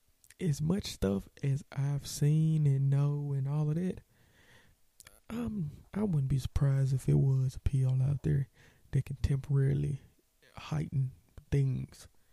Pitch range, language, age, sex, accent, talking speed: 120-170 Hz, English, 20-39, male, American, 140 wpm